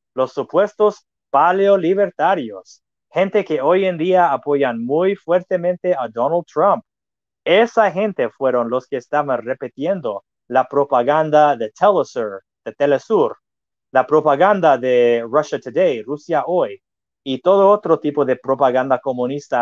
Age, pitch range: 30-49, 125-170 Hz